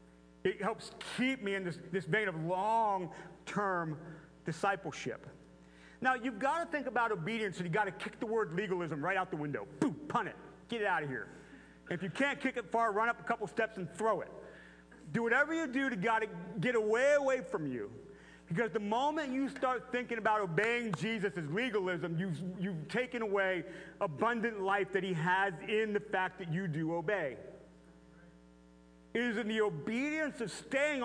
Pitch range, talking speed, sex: 180-250 Hz, 185 wpm, male